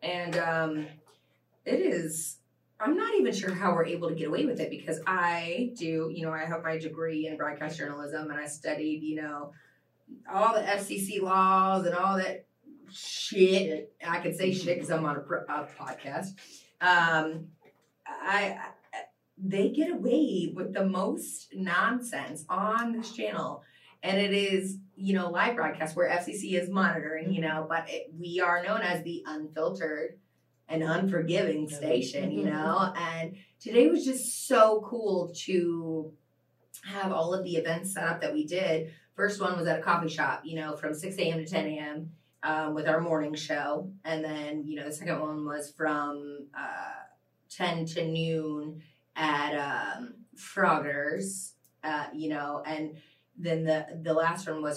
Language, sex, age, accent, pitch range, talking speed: English, female, 20-39, American, 155-190 Hz, 165 wpm